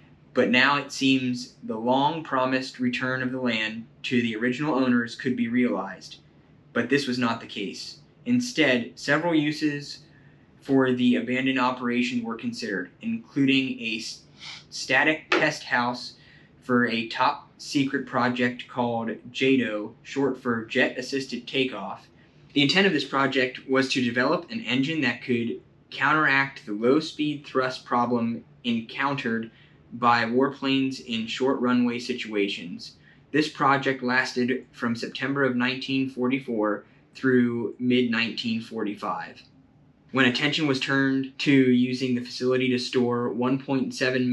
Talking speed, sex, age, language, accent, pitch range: 130 wpm, male, 10-29, English, American, 120-135 Hz